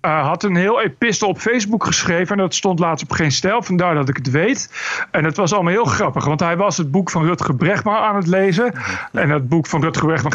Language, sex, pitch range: Dutch, male, 150-200 Hz